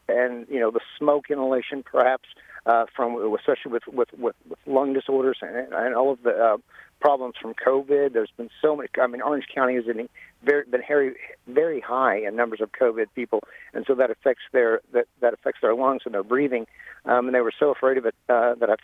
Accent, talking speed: American, 220 wpm